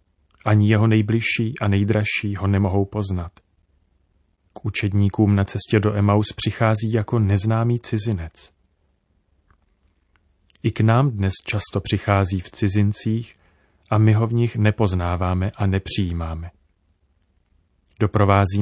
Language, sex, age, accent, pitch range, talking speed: Czech, male, 30-49, native, 85-110 Hz, 115 wpm